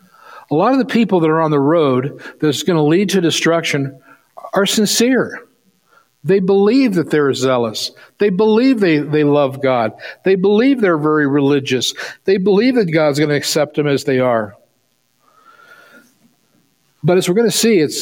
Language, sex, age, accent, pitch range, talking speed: English, male, 60-79, American, 130-180 Hz, 175 wpm